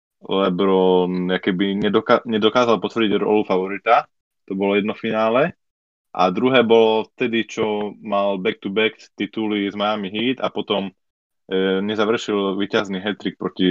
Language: Slovak